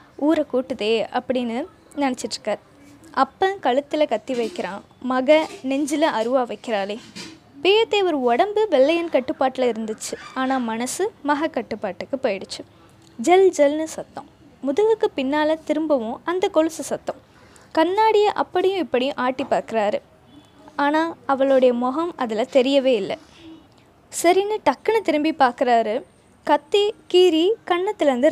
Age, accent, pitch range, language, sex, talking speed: 20-39, native, 250-330 Hz, Tamil, female, 105 wpm